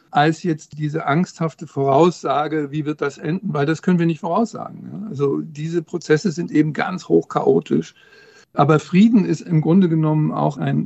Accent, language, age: German, German, 60-79